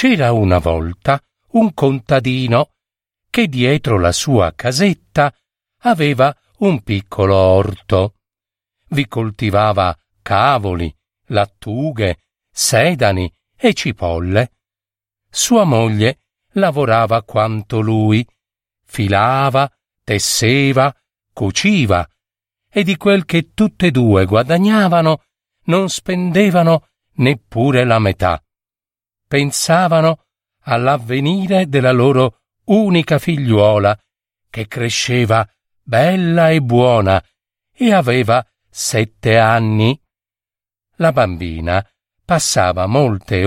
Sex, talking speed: male, 85 wpm